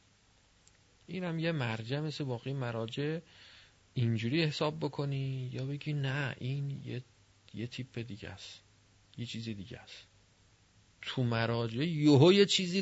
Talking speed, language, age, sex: 125 wpm, Persian, 40-59, male